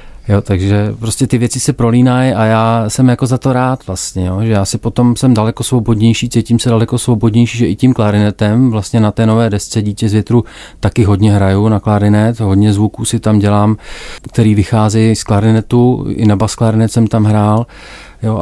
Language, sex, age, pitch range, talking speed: Czech, male, 40-59, 100-110 Hz, 200 wpm